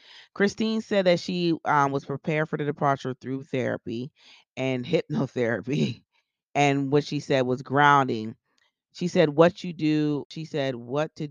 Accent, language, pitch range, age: American, English, 130-165 Hz, 30-49